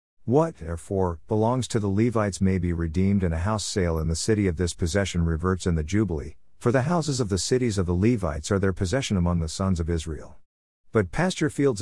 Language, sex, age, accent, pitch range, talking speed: English, male, 50-69, American, 85-120 Hz, 220 wpm